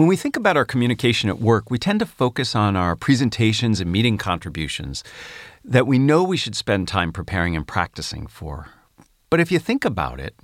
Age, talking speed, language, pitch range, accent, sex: 40-59, 200 wpm, English, 95-130 Hz, American, male